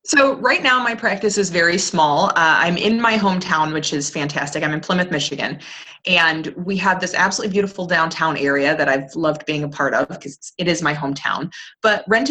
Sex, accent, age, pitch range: female, American, 30-49, 150-190 Hz